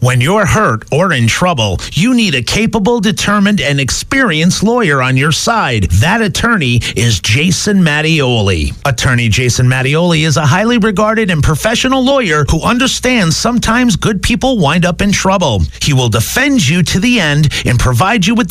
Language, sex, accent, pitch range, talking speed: English, male, American, 130-215 Hz, 170 wpm